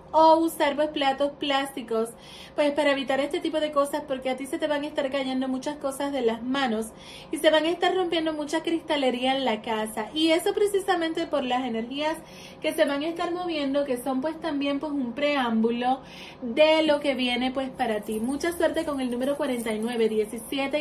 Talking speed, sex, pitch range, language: 200 wpm, female, 245-300 Hz, Spanish